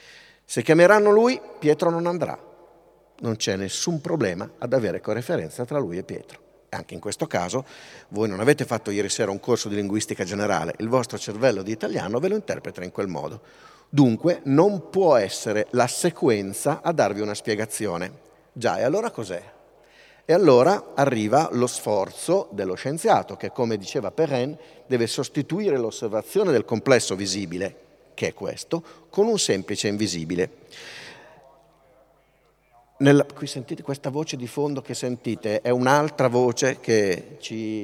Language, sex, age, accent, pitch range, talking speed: Italian, male, 50-69, native, 105-145 Hz, 150 wpm